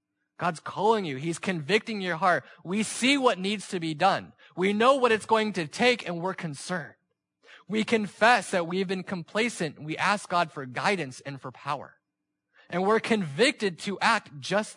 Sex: male